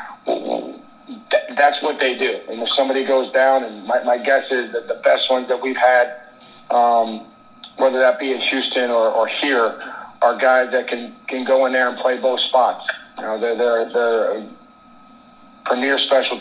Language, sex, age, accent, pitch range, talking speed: English, male, 40-59, American, 125-135 Hz, 185 wpm